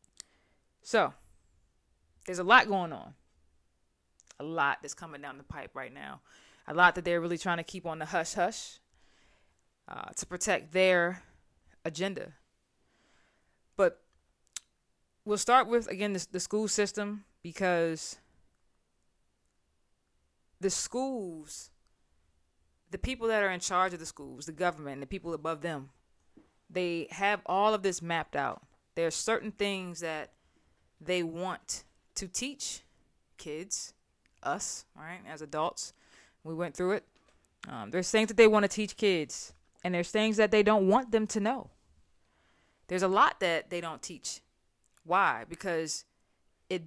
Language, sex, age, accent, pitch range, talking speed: English, female, 20-39, American, 150-200 Hz, 140 wpm